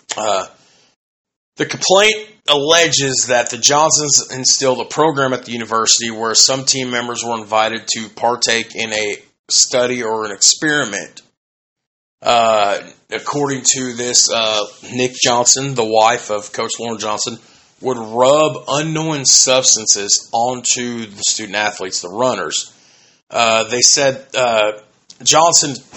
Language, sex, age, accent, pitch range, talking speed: English, male, 30-49, American, 115-140 Hz, 125 wpm